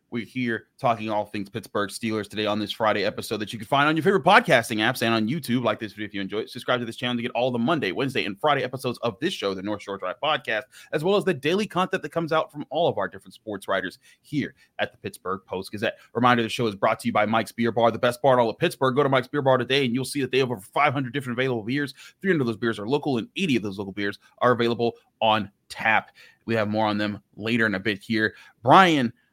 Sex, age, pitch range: male, 30-49, 110-145 Hz